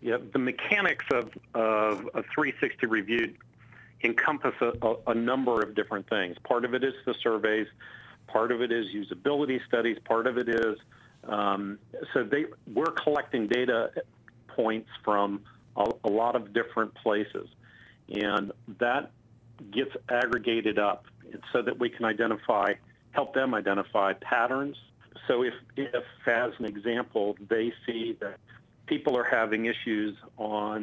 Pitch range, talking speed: 105-120 Hz, 145 wpm